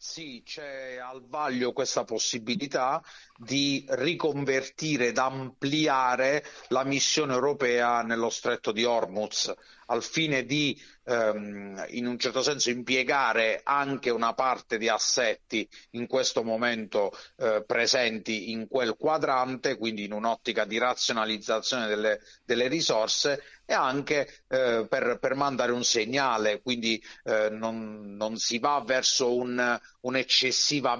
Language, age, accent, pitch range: Italian, 40-59, native, 120-140 Hz